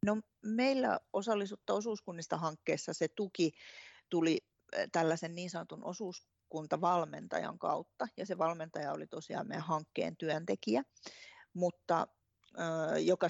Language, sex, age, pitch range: Finnish, female, 40-59, 155-190 Hz